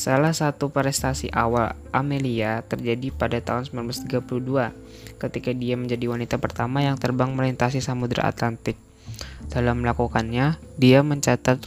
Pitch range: 120-140 Hz